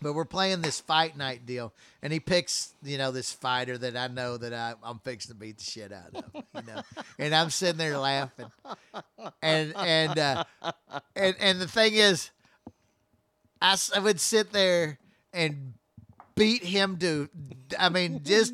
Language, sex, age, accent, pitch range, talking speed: English, male, 50-69, American, 150-210 Hz, 175 wpm